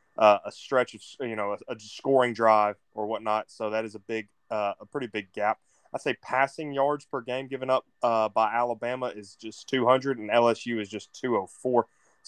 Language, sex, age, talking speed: English, male, 20-39, 200 wpm